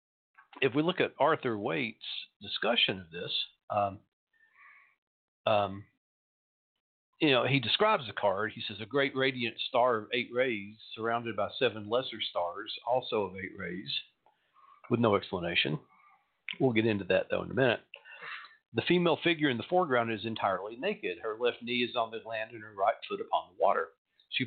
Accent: American